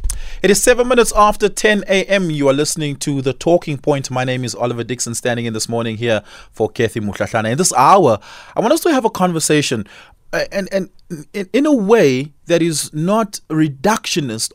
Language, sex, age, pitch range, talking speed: English, male, 20-39, 120-175 Hz, 200 wpm